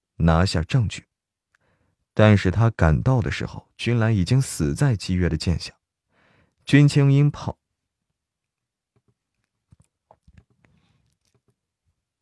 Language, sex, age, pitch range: Chinese, male, 30-49, 90-120 Hz